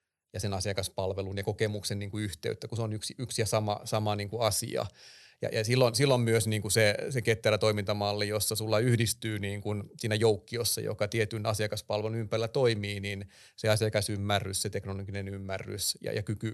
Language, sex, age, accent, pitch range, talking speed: Finnish, male, 30-49, native, 105-115 Hz, 185 wpm